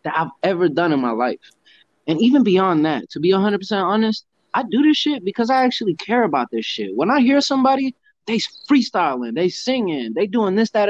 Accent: American